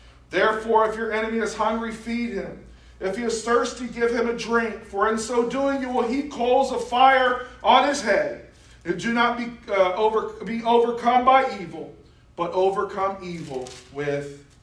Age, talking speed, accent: 40-59, 175 wpm, American